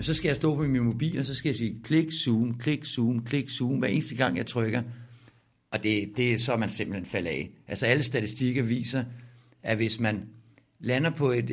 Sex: male